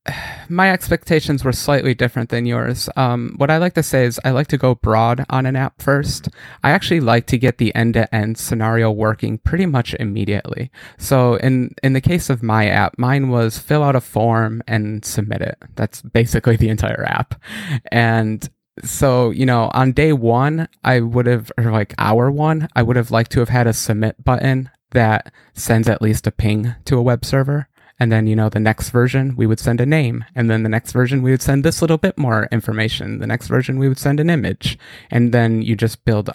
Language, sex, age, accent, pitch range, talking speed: English, male, 20-39, American, 115-135 Hz, 215 wpm